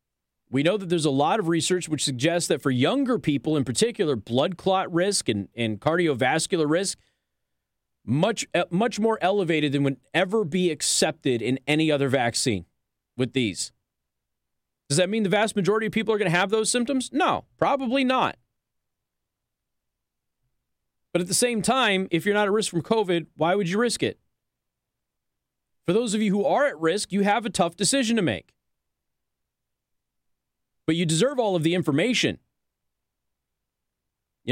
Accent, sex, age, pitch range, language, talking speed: American, male, 30-49, 145-220 Hz, English, 165 wpm